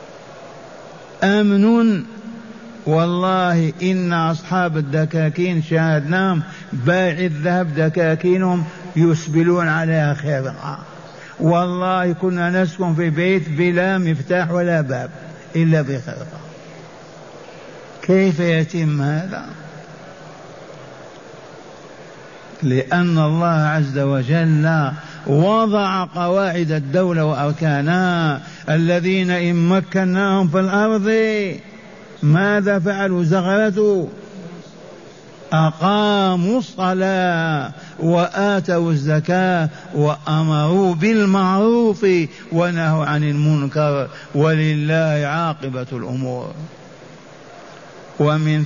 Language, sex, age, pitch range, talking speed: Arabic, male, 60-79, 155-185 Hz, 70 wpm